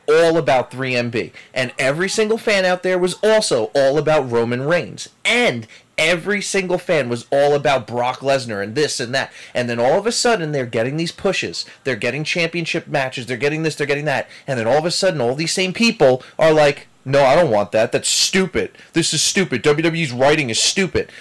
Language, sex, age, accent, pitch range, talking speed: English, male, 30-49, American, 130-180 Hz, 210 wpm